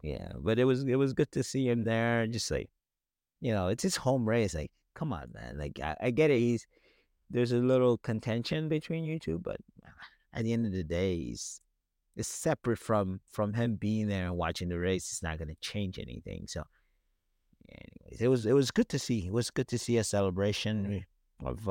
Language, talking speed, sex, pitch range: English, 215 wpm, male, 90-115 Hz